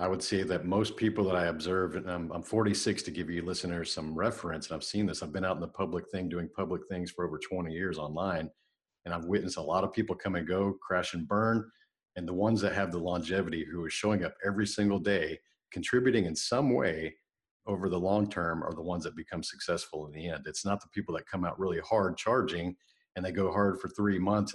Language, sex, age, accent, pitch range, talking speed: English, male, 50-69, American, 90-105 Hz, 240 wpm